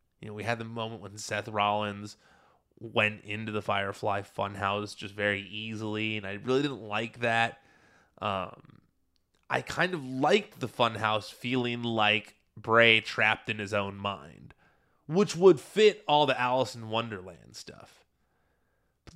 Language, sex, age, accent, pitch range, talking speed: English, male, 20-39, American, 105-135 Hz, 150 wpm